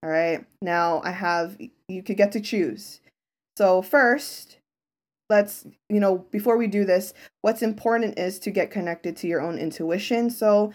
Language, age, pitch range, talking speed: English, 20-39, 175-235 Hz, 170 wpm